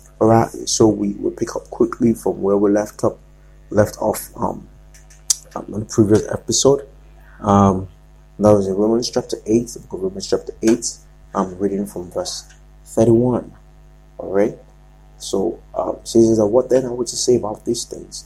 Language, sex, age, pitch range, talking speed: English, male, 30-49, 105-120 Hz, 160 wpm